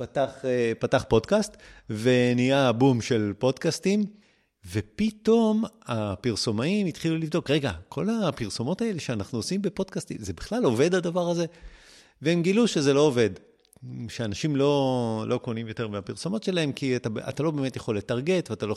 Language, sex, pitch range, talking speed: Hebrew, male, 115-155 Hz, 140 wpm